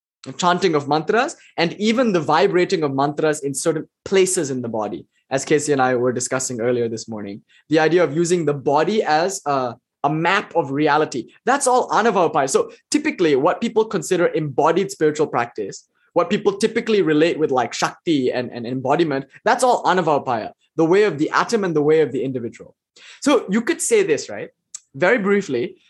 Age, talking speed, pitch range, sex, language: 20-39, 185 wpm, 150-215 Hz, male, English